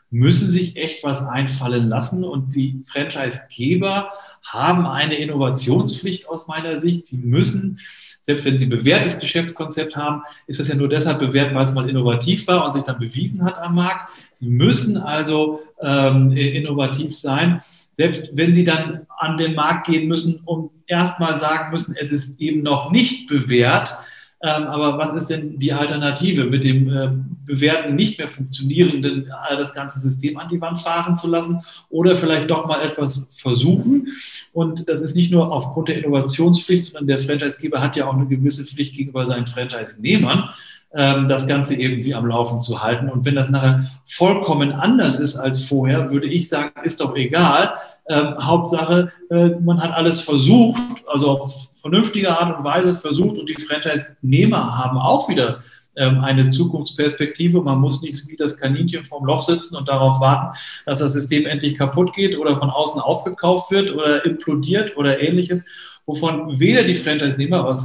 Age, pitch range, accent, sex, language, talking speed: 40-59, 135-170 Hz, German, male, German, 170 wpm